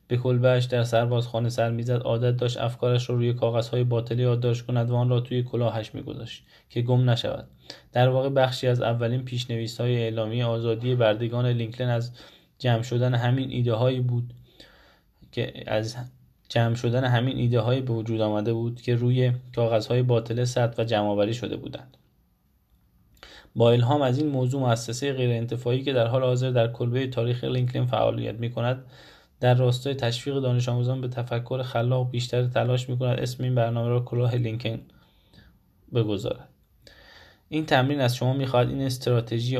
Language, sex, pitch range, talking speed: Persian, male, 115-125 Hz, 155 wpm